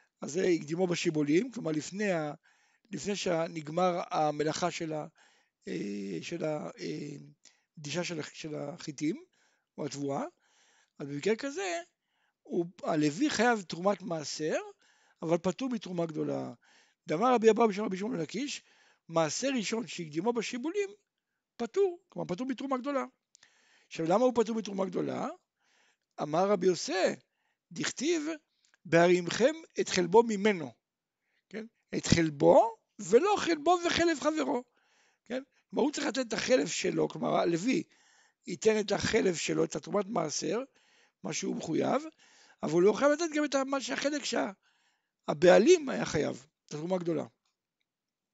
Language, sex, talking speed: Hebrew, male, 115 wpm